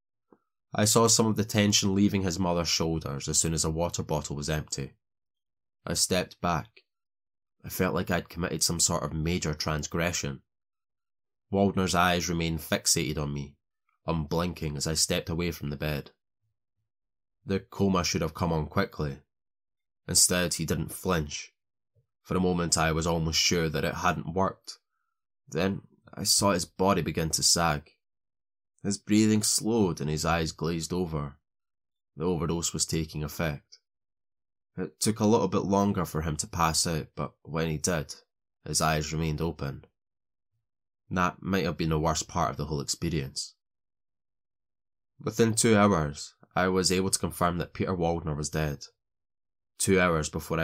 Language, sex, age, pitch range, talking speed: English, male, 20-39, 75-100 Hz, 160 wpm